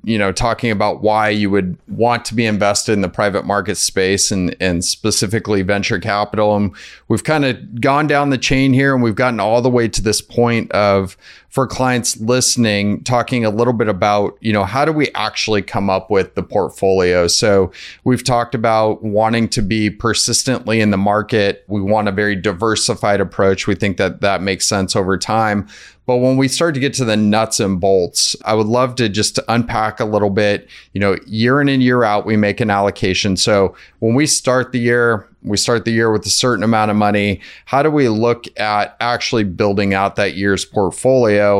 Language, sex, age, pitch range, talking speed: English, male, 30-49, 100-120 Hz, 205 wpm